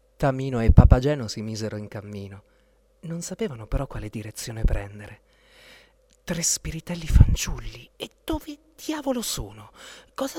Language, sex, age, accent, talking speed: Italian, male, 40-59, native, 120 wpm